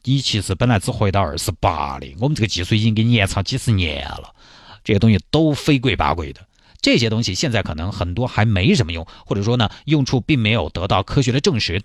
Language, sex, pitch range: Chinese, male, 95-135 Hz